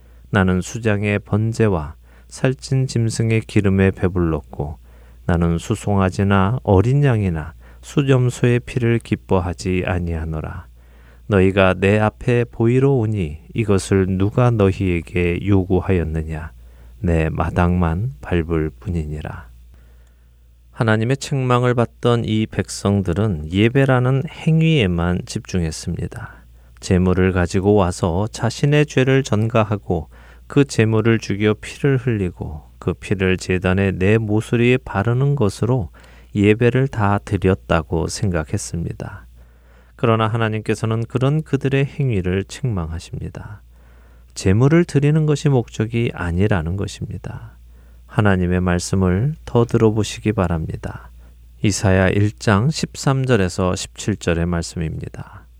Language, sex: Korean, male